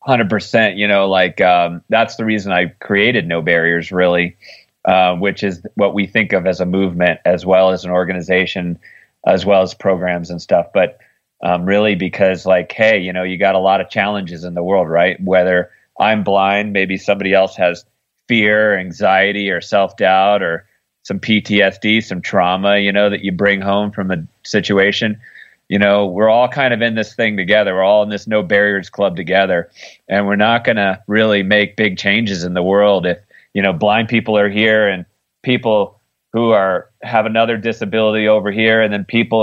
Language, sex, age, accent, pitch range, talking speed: English, male, 30-49, American, 95-105 Hz, 195 wpm